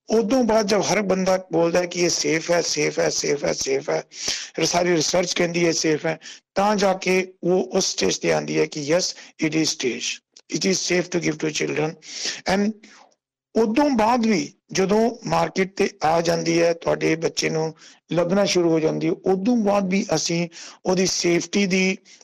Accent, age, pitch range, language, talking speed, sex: Indian, 50-69, 165-200 Hz, English, 95 wpm, male